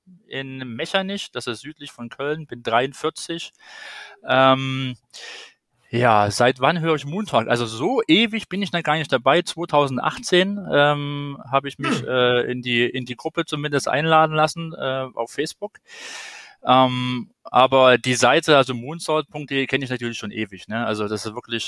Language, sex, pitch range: German, male, 125-175 Hz